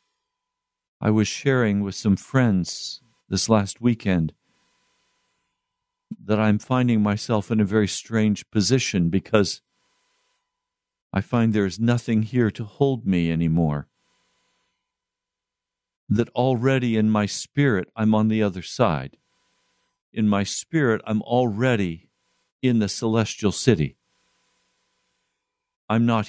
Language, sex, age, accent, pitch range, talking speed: English, male, 50-69, American, 105-130 Hz, 115 wpm